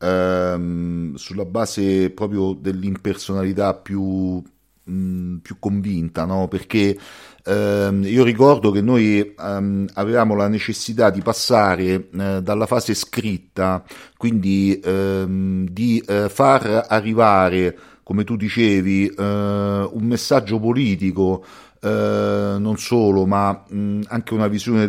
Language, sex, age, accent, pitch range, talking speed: Italian, male, 40-59, native, 95-115 Hz, 115 wpm